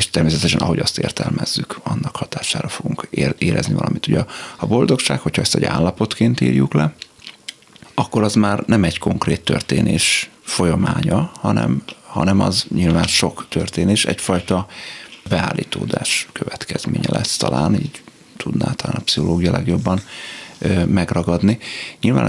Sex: male